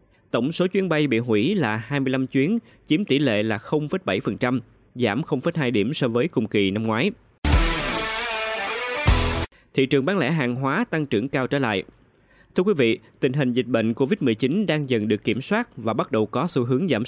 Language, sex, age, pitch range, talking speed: Vietnamese, male, 20-39, 115-150 Hz, 190 wpm